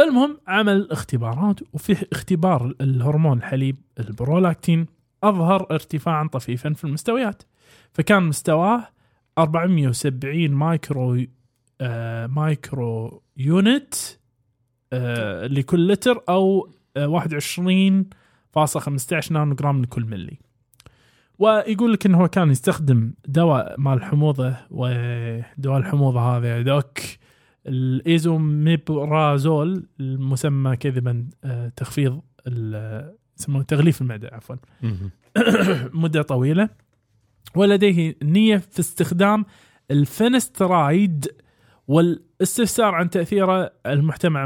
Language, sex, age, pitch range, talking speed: Arabic, male, 20-39, 125-170 Hz, 75 wpm